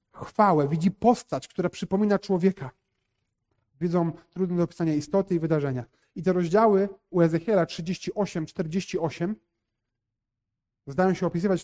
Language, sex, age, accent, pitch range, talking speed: Polish, male, 30-49, native, 135-195 Hz, 115 wpm